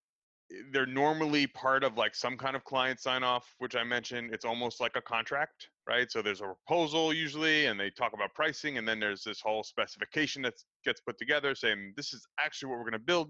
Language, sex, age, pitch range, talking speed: English, male, 30-49, 110-145 Hz, 220 wpm